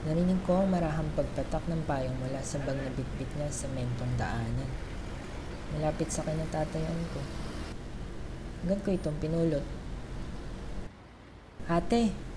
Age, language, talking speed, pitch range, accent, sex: 20-39, Filipino, 120 wpm, 115-155 Hz, native, female